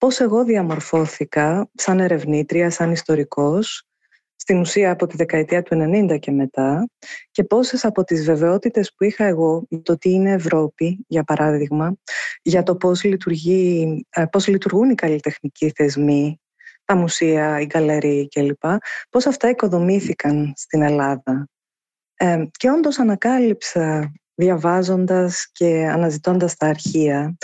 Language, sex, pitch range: Greek, female, 160-220 Hz